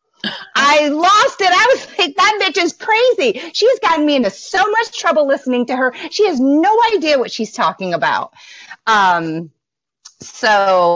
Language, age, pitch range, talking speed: English, 30-49, 180-260 Hz, 165 wpm